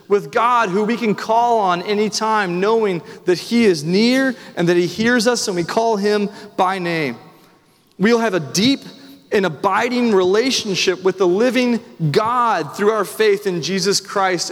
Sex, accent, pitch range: male, American, 185-230 Hz